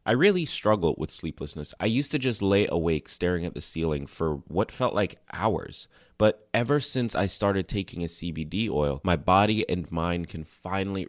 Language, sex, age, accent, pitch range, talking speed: English, male, 30-49, American, 85-105 Hz, 190 wpm